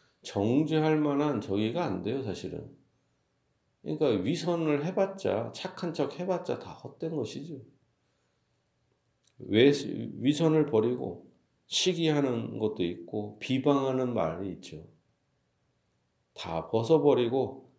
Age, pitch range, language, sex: 40-59, 120-160 Hz, Korean, male